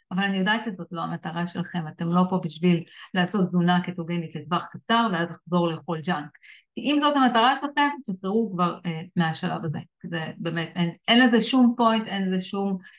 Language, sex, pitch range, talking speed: Hebrew, female, 175-220 Hz, 180 wpm